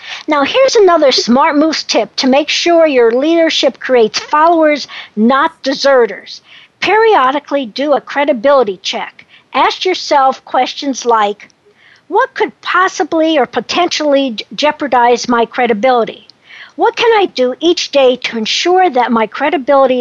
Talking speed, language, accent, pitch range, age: 130 wpm, English, American, 245-330 Hz, 50-69